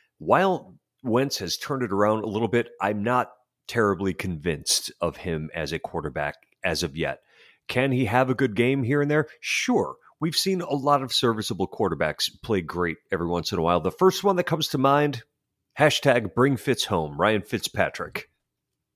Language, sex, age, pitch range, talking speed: English, male, 40-59, 90-135 Hz, 185 wpm